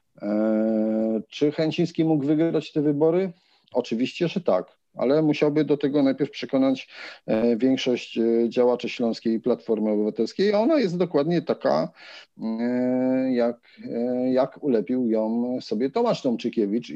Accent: native